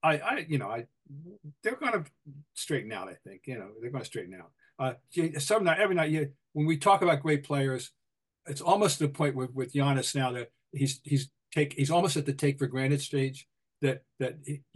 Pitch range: 125-150 Hz